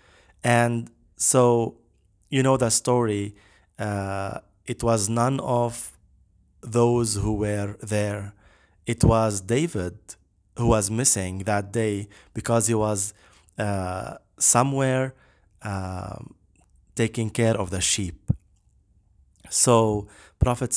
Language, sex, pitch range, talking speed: English, male, 95-115 Hz, 105 wpm